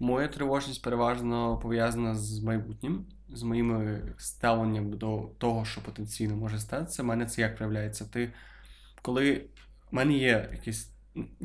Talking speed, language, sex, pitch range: 135 wpm, Ukrainian, male, 110-125 Hz